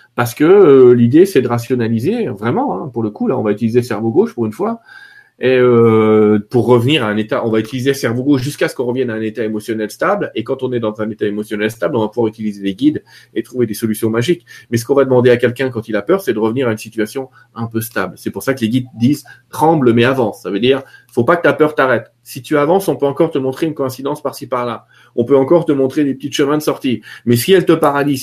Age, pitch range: 40-59, 115-150 Hz